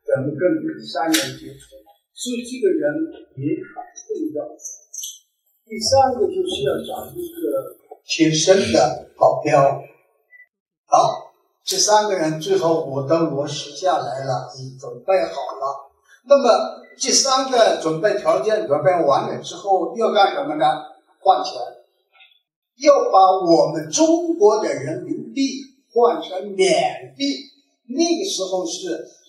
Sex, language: male, Chinese